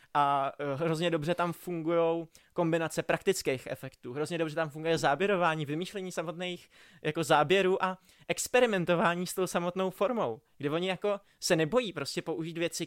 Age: 20-39